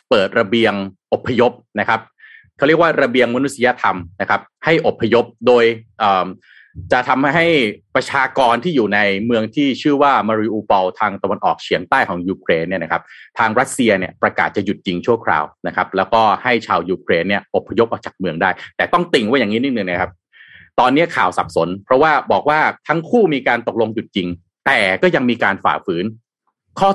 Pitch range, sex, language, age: 100-150 Hz, male, Thai, 30-49